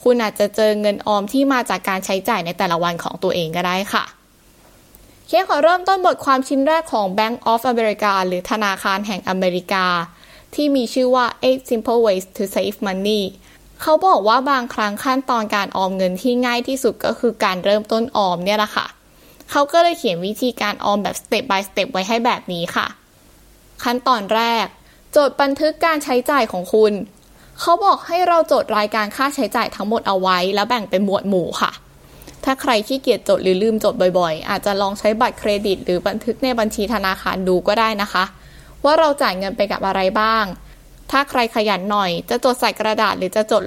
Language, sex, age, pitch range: Thai, female, 20-39, 195-255 Hz